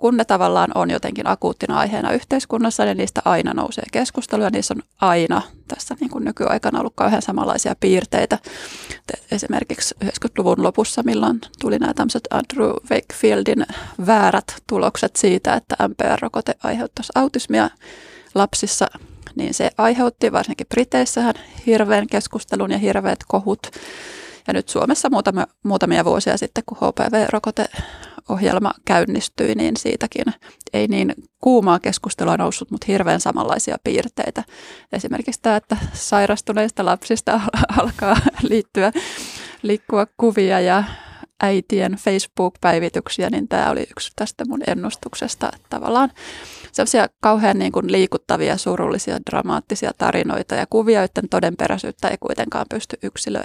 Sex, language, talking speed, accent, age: female, Finnish, 120 wpm, native, 20-39